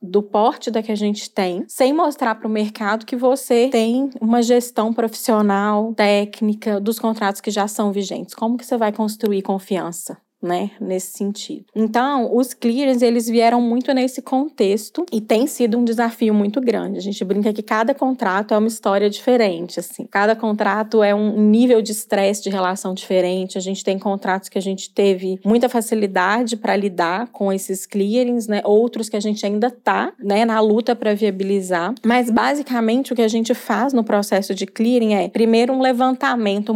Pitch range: 200-240 Hz